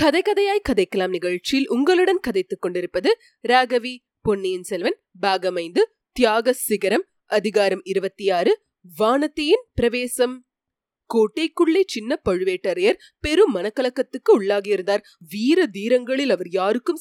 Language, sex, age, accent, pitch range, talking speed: Tamil, female, 20-39, native, 210-335 Hz, 100 wpm